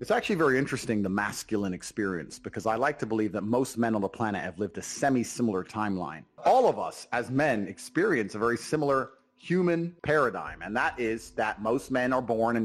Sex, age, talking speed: male, 30-49, 205 wpm